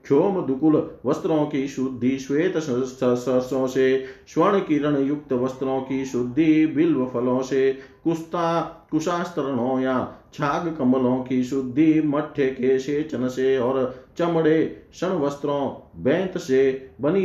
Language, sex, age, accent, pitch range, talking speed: Hindi, male, 50-69, native, 130-150 Hz, 75 wpm